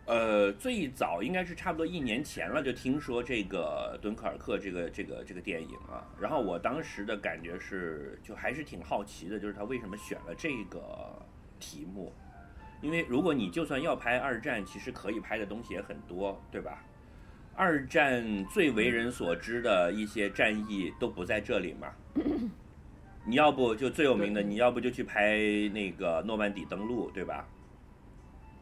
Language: Chinese